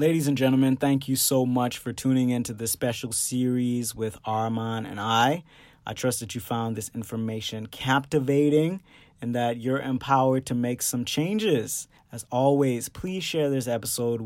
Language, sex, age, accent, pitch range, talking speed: English, male, 30-49, American, 115-145 Hz, 165 wpm